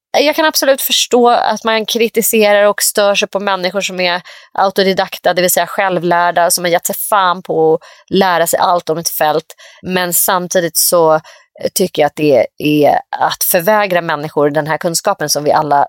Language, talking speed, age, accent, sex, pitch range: Swedish, 185 wpm, 30-49, native, female, 160-200 Hz